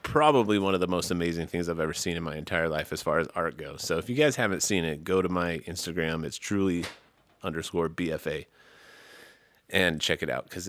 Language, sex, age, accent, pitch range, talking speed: English, male, 30-49, American, 90-105 Hz, 220 wpm